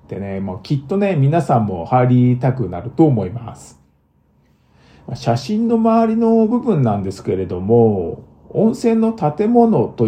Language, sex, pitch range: Japanese, male, 105-175 Hz